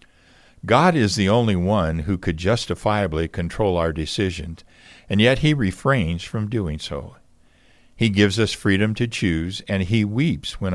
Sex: male